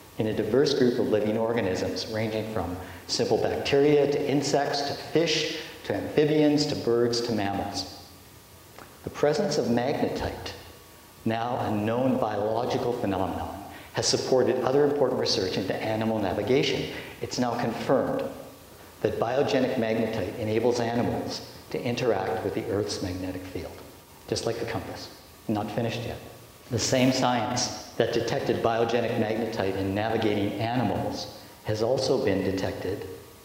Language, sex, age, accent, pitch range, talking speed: English, male, 60-79, American, 105-125 Hz, 135 wpm